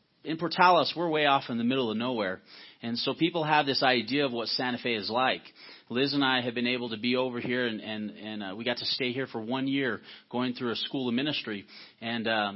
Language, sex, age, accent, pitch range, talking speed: English, male, 40-59, American, 120-155 Hz, 250 wpm